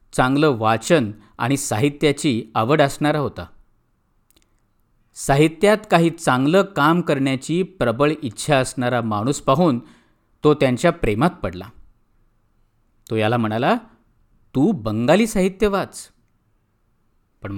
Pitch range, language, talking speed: 110-165 Hz, Marathi, 100 wpm